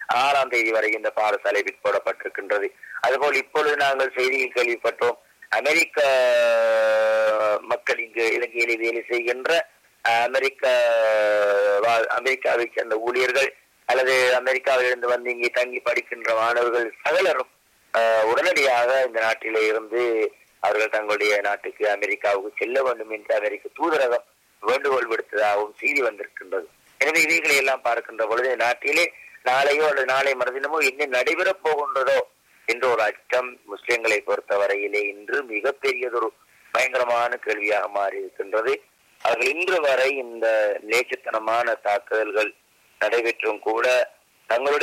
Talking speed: 105 wpm